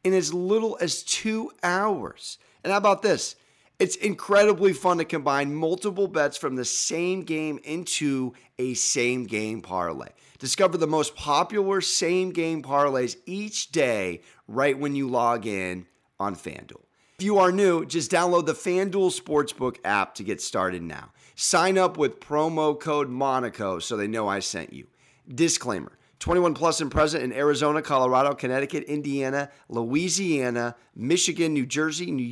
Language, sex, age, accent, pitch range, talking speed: English, male, 30-49, American, 130-170 Hz, 155 wpm